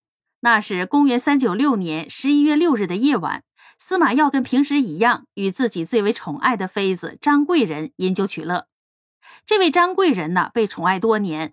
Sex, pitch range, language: female, 185-290 Hz, Chinese